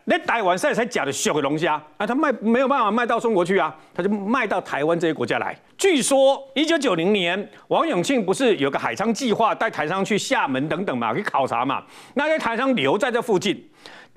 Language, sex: Chinese, male